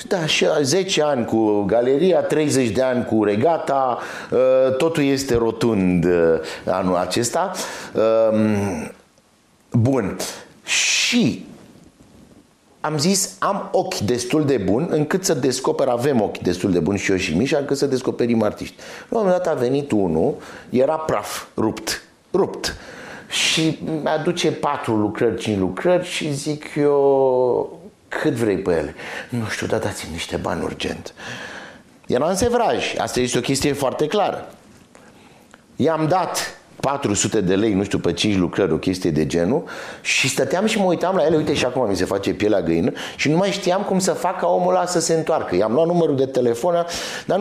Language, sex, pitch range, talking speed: Romanian, male, 115-170 Hz, 165 wpm